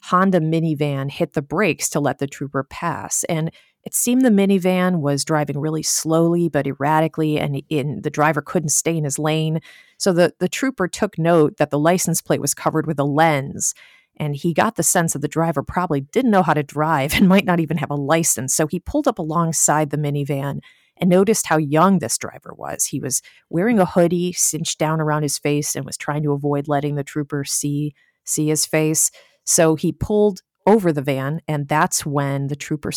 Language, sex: English, female